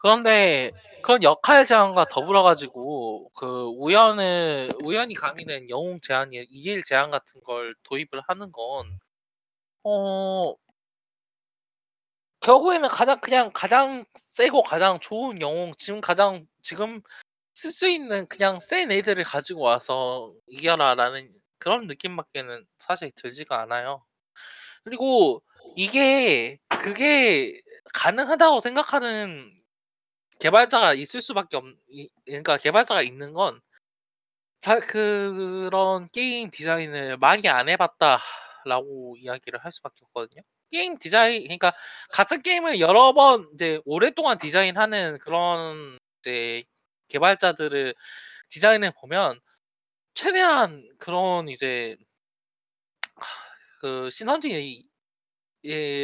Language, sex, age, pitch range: Korean, male, 20-39, 140-235 Hz